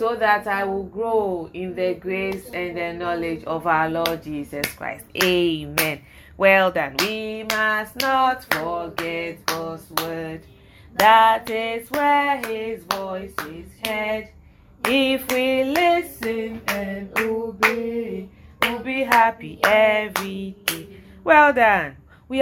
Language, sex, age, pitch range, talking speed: English, female, 30-49, 170-230 Hz, 120 wpm